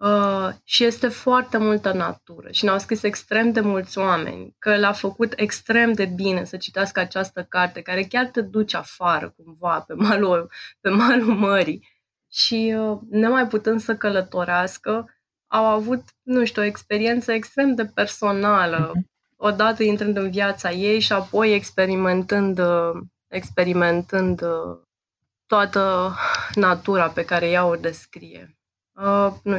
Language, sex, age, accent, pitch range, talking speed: Romanian, female, 20-39, native, 165-200 Hz, 135 wpm